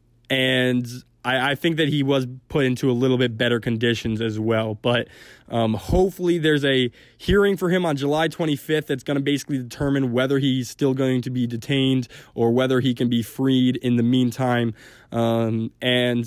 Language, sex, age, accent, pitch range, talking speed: English, male, 20-39, American, 120-145 Hz, 185 wpm